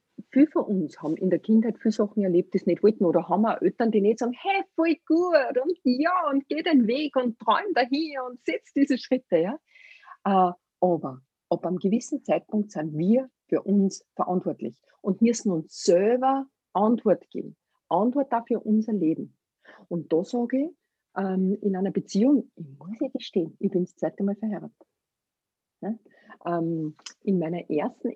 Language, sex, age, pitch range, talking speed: German, female, 50-69, 195-275 Hz, 170 wpm